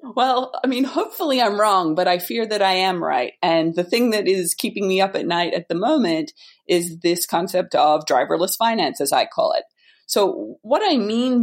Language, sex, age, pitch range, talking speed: English, female, 30-49, 165-225 Hz, 210 wpm